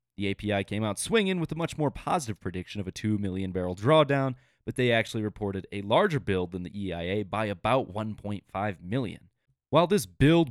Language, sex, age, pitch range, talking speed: English, male, 30-49, 100-145 Hz, 195 wpm